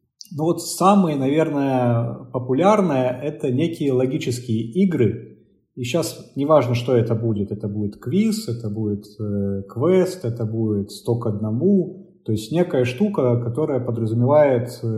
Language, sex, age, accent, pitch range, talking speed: Russian, male, 30-49, native, 115-150 Hz, 130 wpm